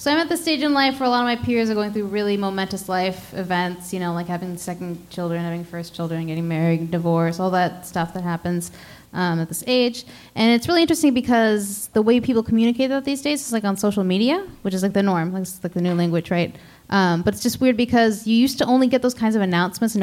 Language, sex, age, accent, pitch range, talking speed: English, female, 10-29, American, 175-230 Hz, 255 wpm